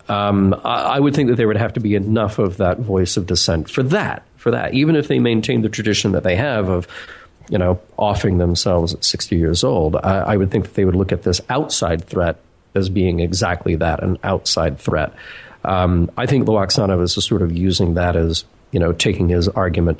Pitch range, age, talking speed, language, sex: 90-110 Hz, 40-59, 220 wpm, English, male